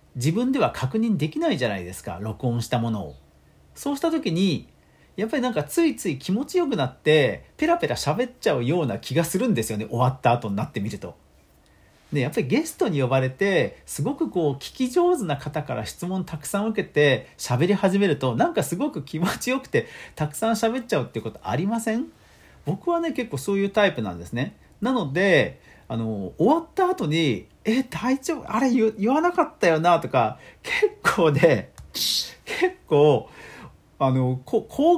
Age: 40-59